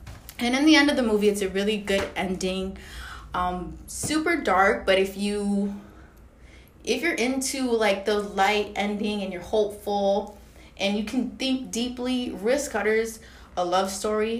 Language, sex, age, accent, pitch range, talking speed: English, female, 20-39, American, 180-230 Hz, 160 wpm